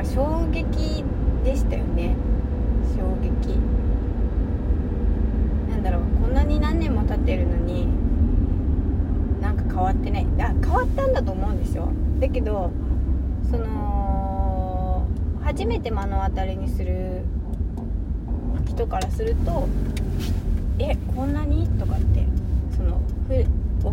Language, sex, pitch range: Japanese, female, 75-90 Hz